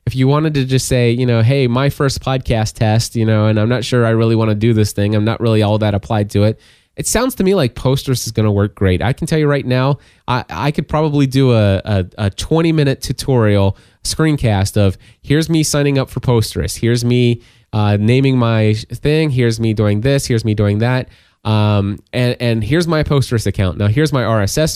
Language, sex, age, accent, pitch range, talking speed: English, male, 20-39, American, 105-135 Hz, 230 wpm